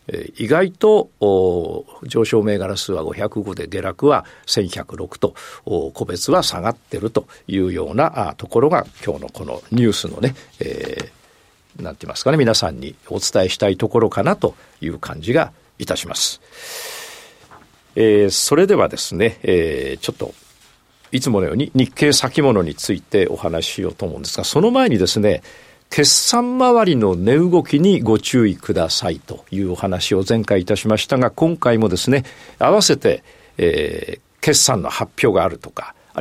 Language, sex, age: Japanese, male, 50-69